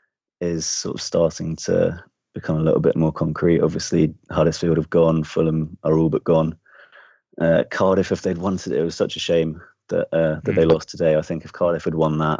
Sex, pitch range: male, 80-85 Hz